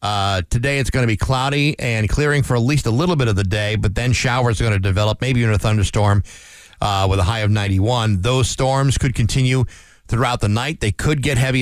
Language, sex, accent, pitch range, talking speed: English, male, American, 105-135 Hz, 240 wpm